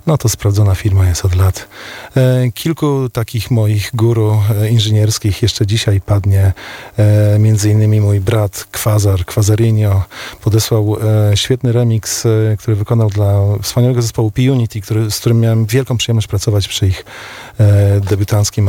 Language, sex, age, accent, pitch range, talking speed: Polish, male, 40-59, native, 100-115 Hz, 125 wpm